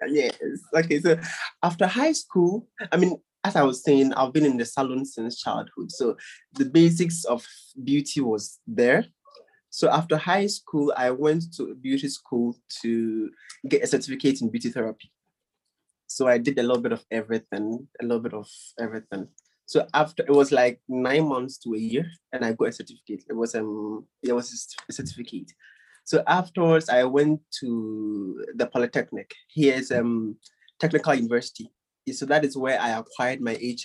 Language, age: English, 20-39